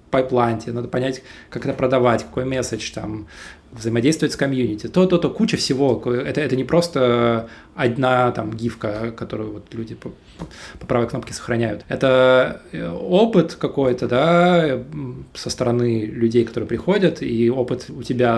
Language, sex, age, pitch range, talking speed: Russian, male, 20-39, 115-135 Hz, 140 wpm